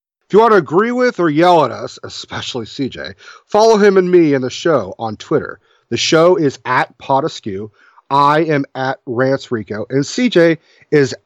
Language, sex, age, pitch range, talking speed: English, male, 40-59, 130-180 Hz, 180 wpm